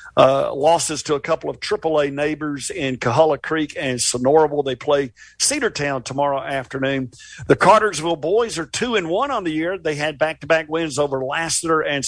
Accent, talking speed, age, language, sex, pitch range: American, 175 wpm, 50-69, English, male, 140-165 Hz